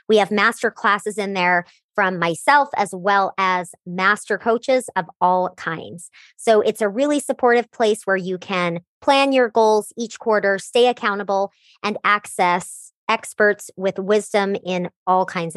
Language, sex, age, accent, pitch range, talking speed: English, male, 30-49, American, 180-220 Hz, 155 wpm